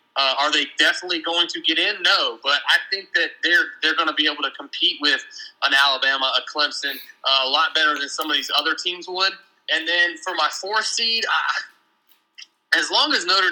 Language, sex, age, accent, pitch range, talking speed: English, male, 20-39, American, 150-195 Hz, 215 wpm